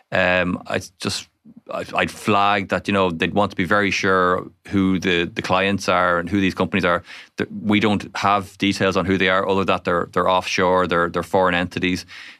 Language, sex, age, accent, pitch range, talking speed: English, male, 20-39, Irish, 90-100 Hz, 200 wpm